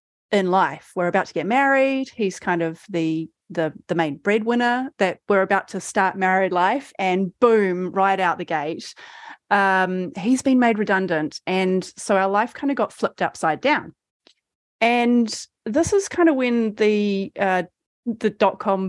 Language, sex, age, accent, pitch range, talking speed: English, female, 30-49, Australian, 180-240 Hz, 170 wpm